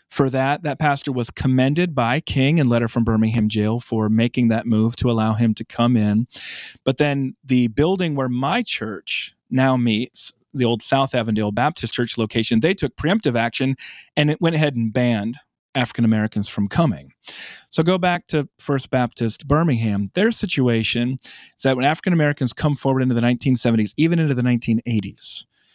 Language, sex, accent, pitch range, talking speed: English, male, American, 120-155 Hz, 170 wpm